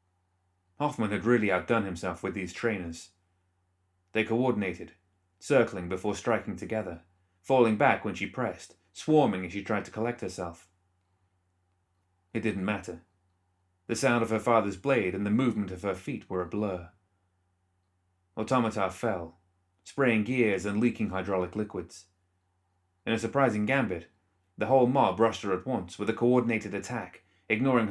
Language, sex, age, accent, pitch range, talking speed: English, male, 30-49, British, 90-110 Hz, 145 wpm